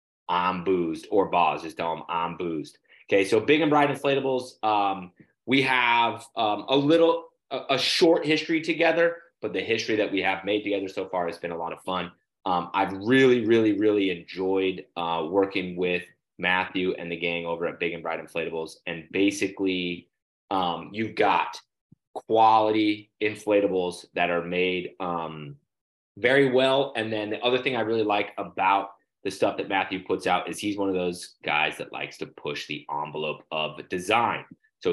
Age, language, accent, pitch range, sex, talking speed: 30-49, English, American, 90-115 Hz, male, 180 wpm